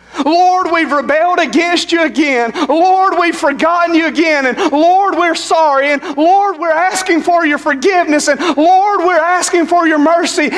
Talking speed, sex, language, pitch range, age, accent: 165 wpm, male, English, 245-340 Hz, 40-59, American